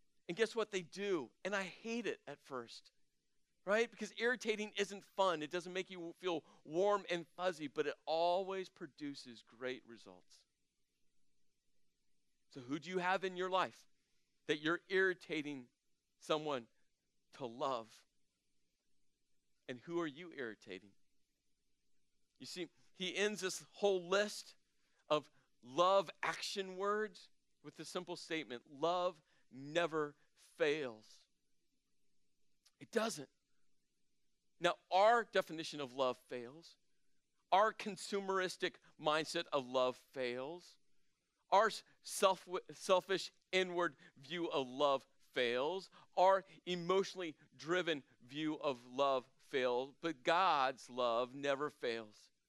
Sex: male